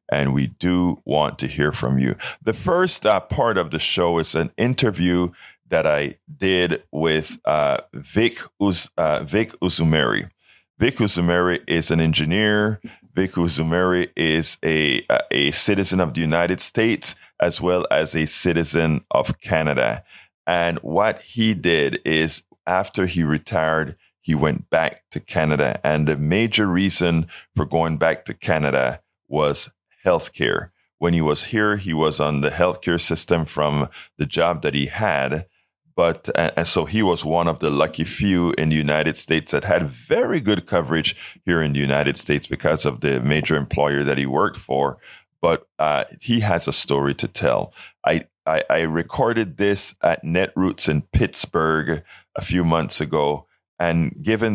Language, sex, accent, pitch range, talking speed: English, male, American, 75-95 Hz, 160 wpm